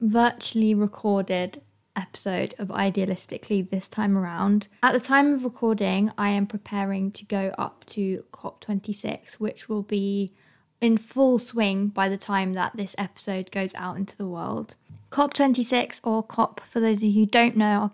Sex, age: female, 20-39